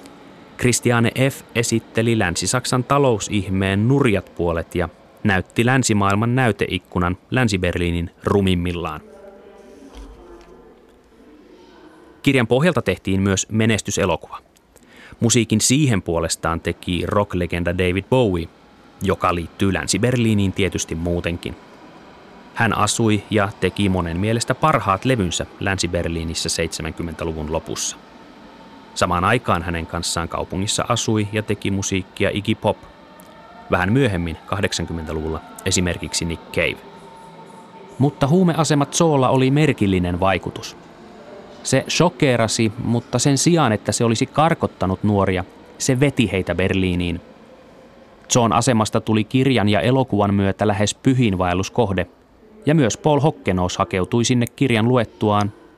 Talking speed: 100 wpm